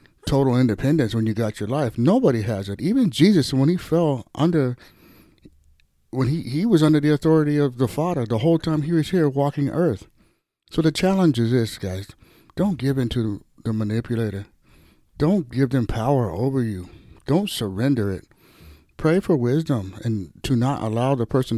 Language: English